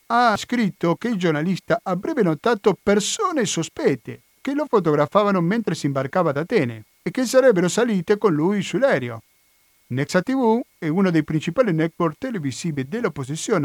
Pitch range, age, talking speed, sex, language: 140-200 Hz, 50-69, 145 wpm, male, Italian